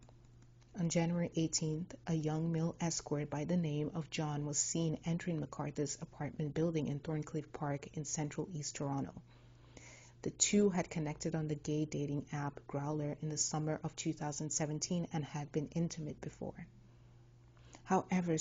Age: 30-49